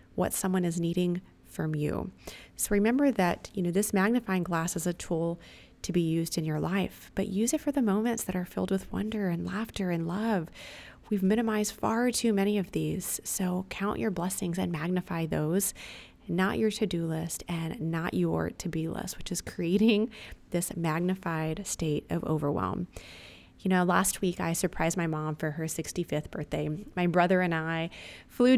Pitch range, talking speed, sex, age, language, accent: 170-210 Hz, 180 wpm, female, 30-49, English, American